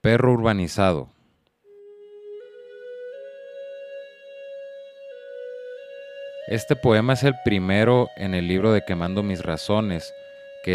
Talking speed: 85 wpm